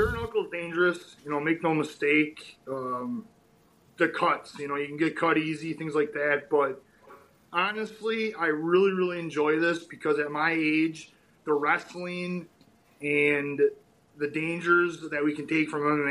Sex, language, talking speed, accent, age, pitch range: male, English, 160 wpm, American, 30-49, 145-175 Hz